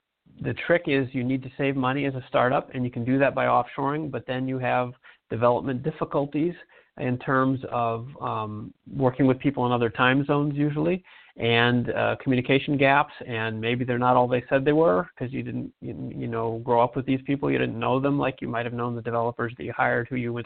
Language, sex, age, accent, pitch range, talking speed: English, male, 40-59, American, 115-135 Hz, 225 wpm